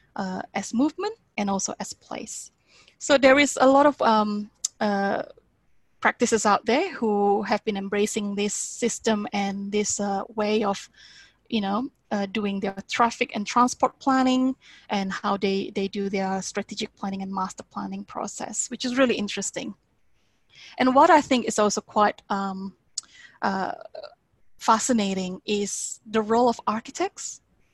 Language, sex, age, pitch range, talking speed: English, female, 20-39, 200-235 Hz, 150 wpm